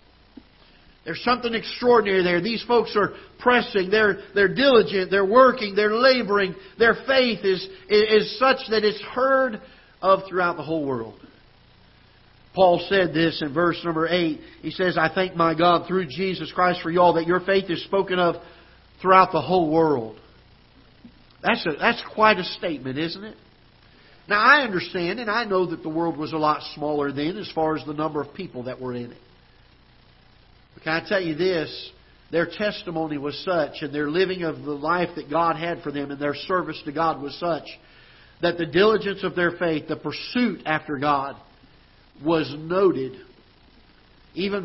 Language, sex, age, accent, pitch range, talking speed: English, male, 50-69, American, 155-200 Hz, 175 wpm